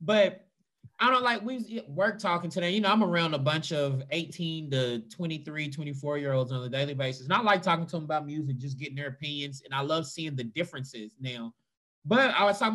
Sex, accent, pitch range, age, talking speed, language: male, American, 145-185 Hz, 20-39, 225 wpm, English